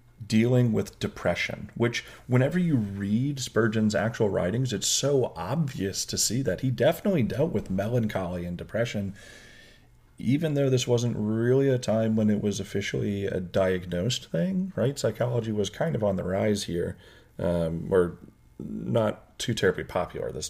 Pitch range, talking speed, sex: 95-125 Hz, 155 wpm, male